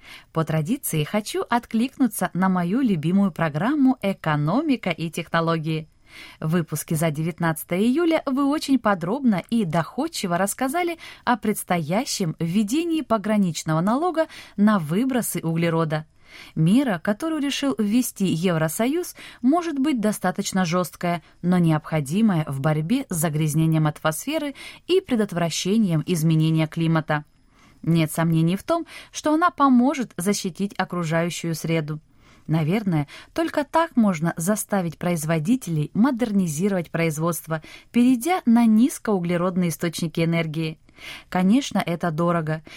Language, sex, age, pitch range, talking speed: Russian, female, 20-39, 165-245 Hz, 105 wpm